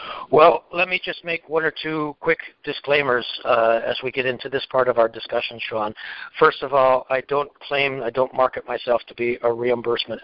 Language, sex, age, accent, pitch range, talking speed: English, male, 60-79, American, 120-140 Hz, 205 wpm